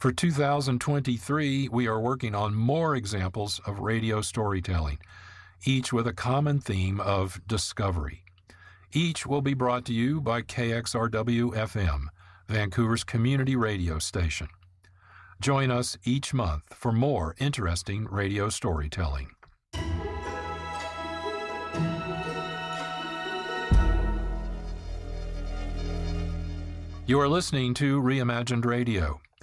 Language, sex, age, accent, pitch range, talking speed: English, male, 50-69, American, 90-130 Hz, 90 wpm